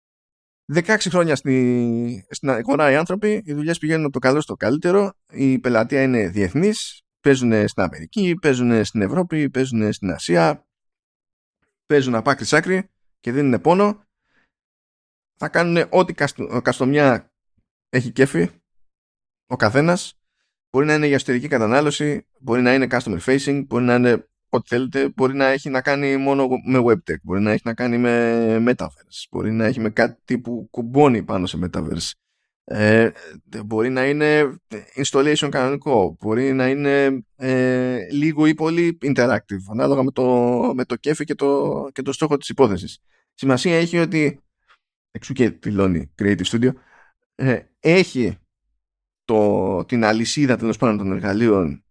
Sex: male